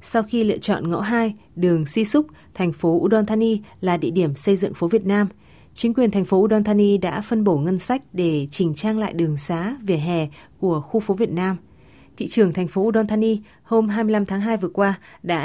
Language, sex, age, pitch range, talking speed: Vietnamese, female, 20-39, 170-215 Hz, 225 wpm